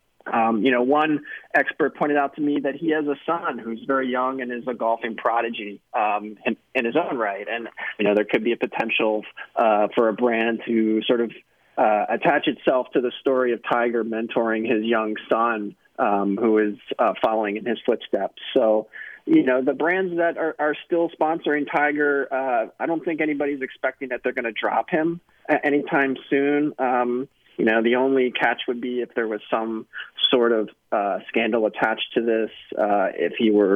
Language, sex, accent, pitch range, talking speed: English, male, American, 110-140 Hz, 195 wpm